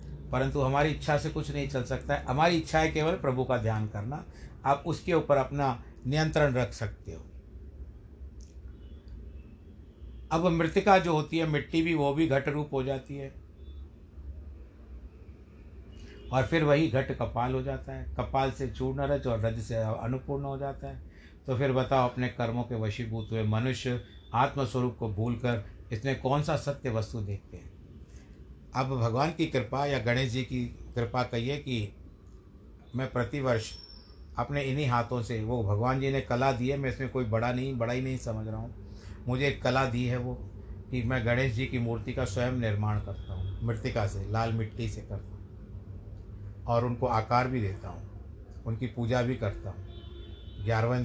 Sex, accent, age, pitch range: male, native, 60-79, 100-135 Hz